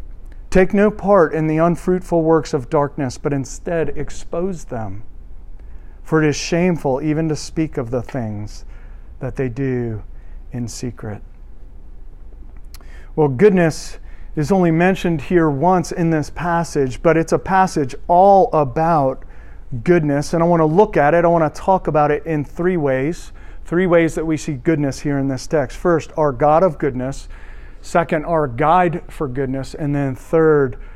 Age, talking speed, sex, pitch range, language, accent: 40-59, 165 wpm, male, 130-170 Hz, English, American